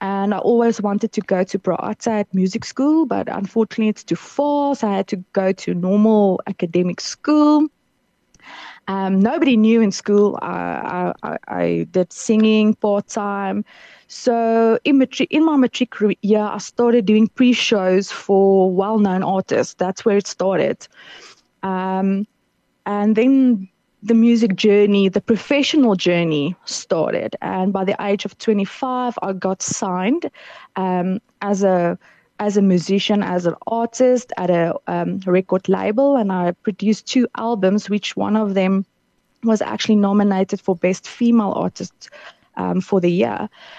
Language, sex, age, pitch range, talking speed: English, female, 20-39, 190-230 Hz, 145 wpm